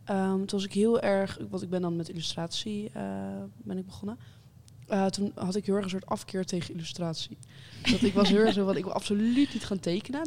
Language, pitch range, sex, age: English, 170-210 Hz, female, 20-39